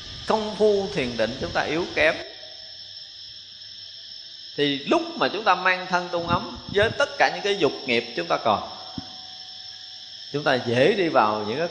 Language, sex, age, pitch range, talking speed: Vietnamese, male, 20-39, 120-200 Hz, 175 wpm